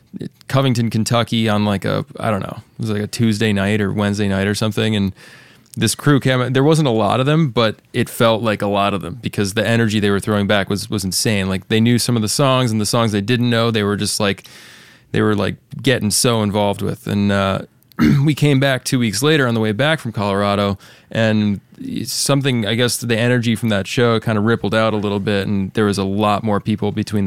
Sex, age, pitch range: male, 20-39, 100-115 Hz